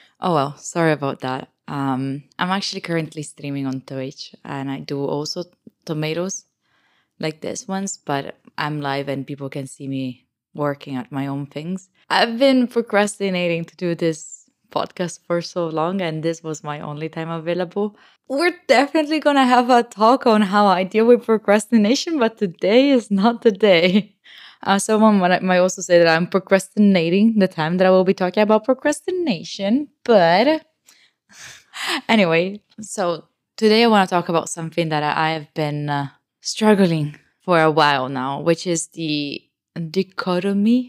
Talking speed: 165 wpm